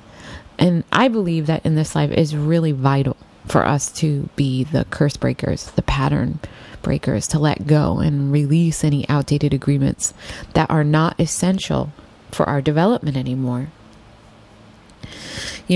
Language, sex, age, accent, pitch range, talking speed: English, female, 30-49, American, 140-170 Hz, 145 wpm